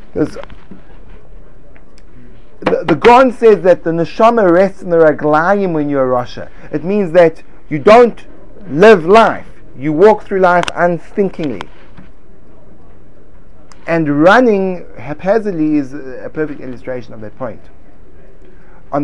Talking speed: 120 wpm